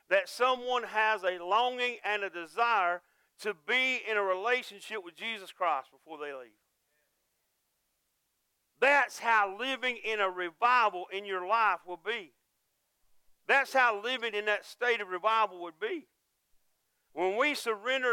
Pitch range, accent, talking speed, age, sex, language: 185-230 Hz, American, 140 wpm, 50-69, male, English